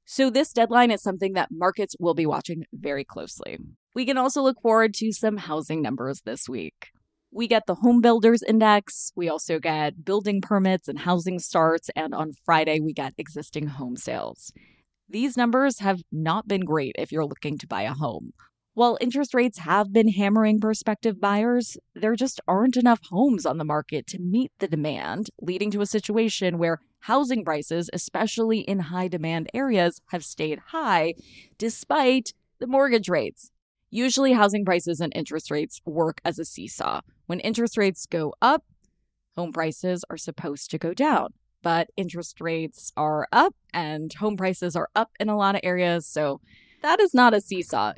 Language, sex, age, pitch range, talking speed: English, female, 20-39, 165-225 Hz, 175 wpm